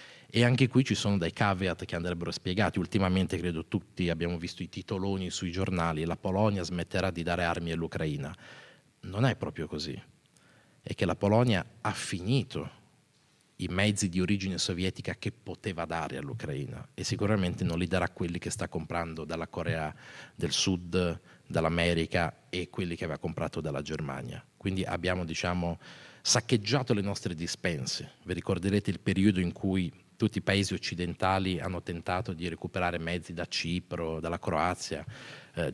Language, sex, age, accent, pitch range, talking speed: Italian, male, 30-49, native, 85-100 Hz, 155 wpm